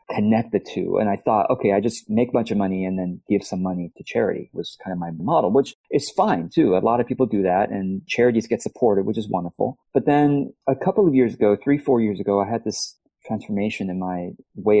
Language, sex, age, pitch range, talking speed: English, male, 30-49, 95-130 Hz, 245 wpm